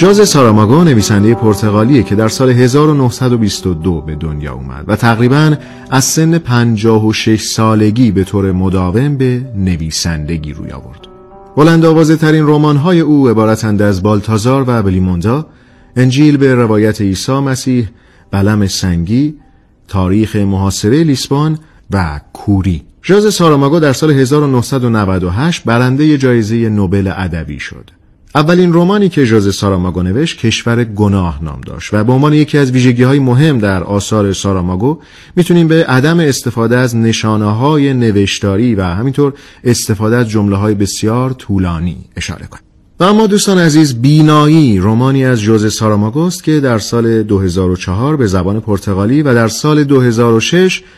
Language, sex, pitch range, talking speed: Persian, male, 100-140 Hz, 140 wpm